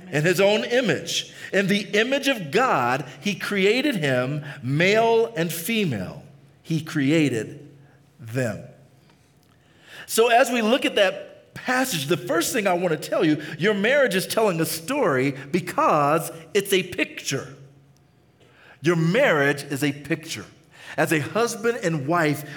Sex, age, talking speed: male, 50-69, 140 wpm